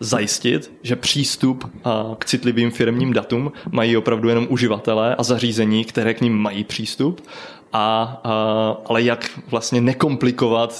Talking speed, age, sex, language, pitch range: 130 wpm, 20-39, male, Czech, 110-120 Hz